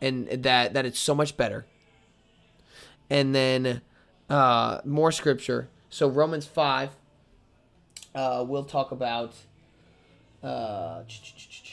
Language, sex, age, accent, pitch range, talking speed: English, male, 20-39, American, 125-155 Hz, 100 wpm